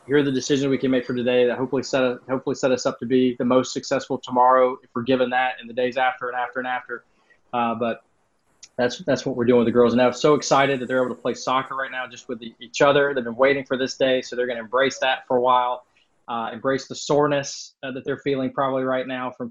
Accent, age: American, 20-39